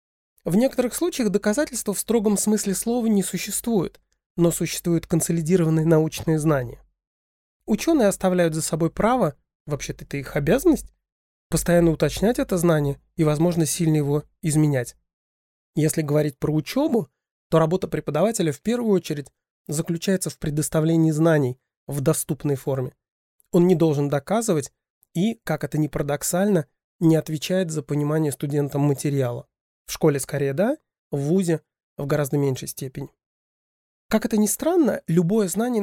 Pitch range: 145-185 Hz